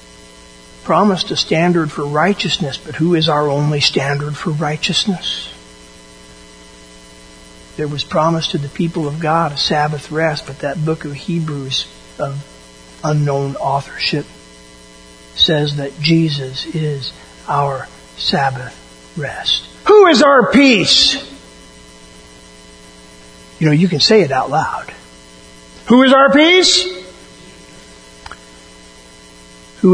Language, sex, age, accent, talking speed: English, male, 50-69, American, 110 wpm